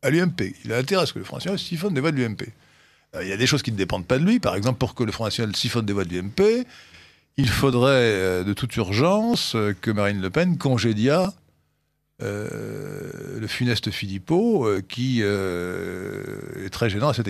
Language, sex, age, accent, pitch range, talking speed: French, male, 50-69, French, 100-145 Hz, 215 wpm